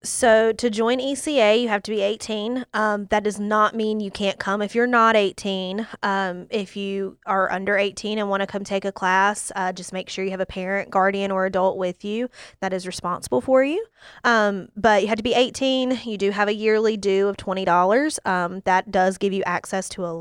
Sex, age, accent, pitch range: female, 20-39, American, 180-210 Hz